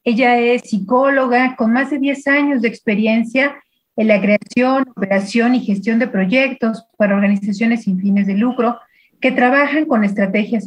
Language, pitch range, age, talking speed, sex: Spanish, 200-250 Hz, 40-59, 155 wpm, female